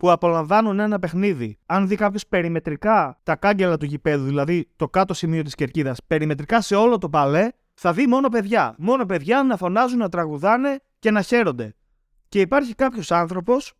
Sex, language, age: male, Greek, 20-39